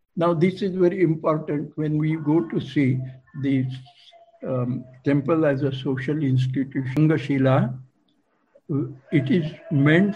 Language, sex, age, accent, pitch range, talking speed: English, male, 60-79, Indian, 130-155 Hz, 120 wpm